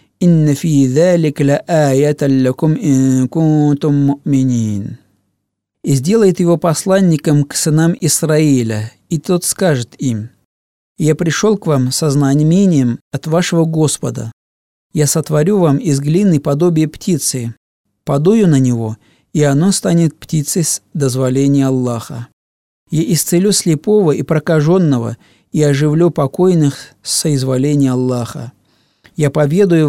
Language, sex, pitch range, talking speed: Russian, male, 130-165 Hz, 100 wpm